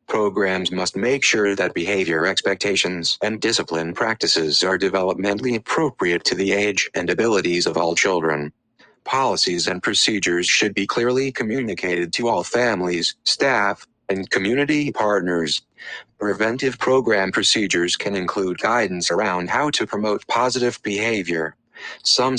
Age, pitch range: 30-49, 90-115 Hz